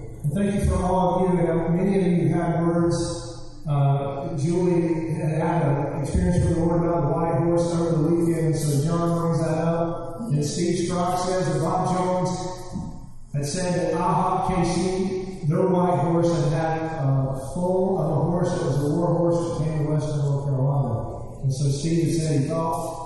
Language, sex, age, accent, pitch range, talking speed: English, male, 30-49, American, 145-175 Hz, 185 wpm